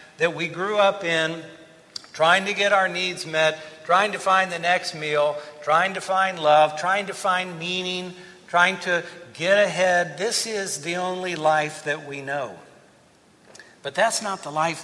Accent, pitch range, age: American, 155-195 Hz, 60-79